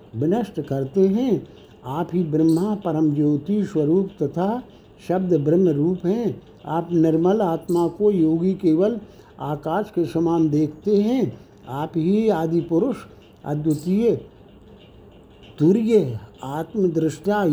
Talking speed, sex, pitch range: 105 wpm, male, 155-195 Hz